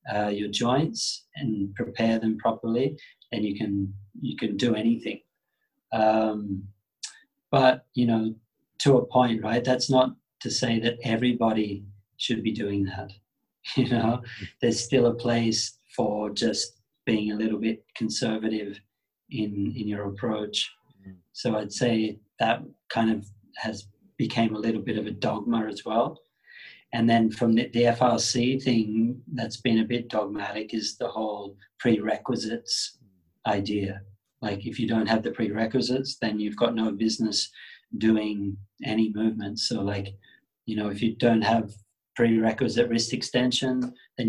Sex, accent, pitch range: male, Australian, 105-120 Hz